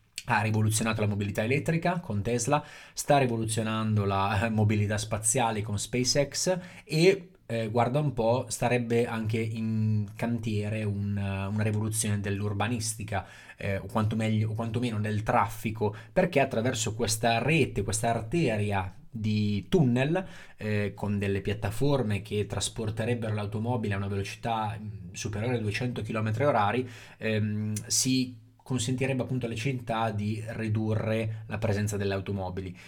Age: 20-39